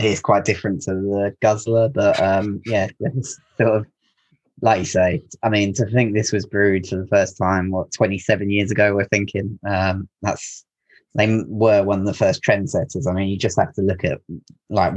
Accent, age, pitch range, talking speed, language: British, 20-39, 95-105 Hz, 205 wpm, English